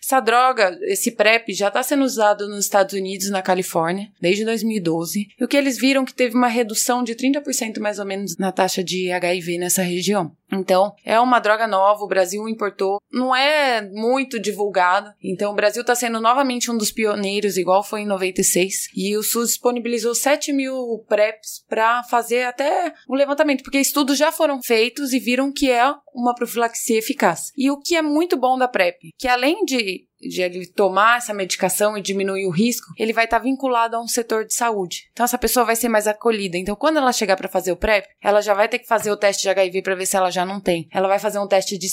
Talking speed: 215 wpm